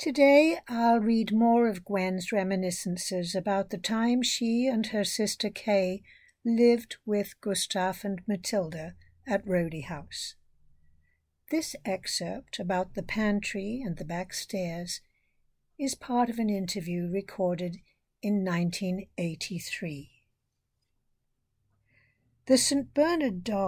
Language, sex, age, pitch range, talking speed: English, female, 60-79, 175-220 Hz, 105 wpm